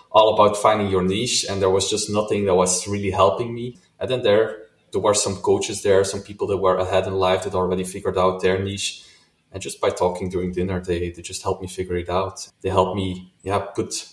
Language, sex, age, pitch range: English, male, 20-39, 90-105 Hz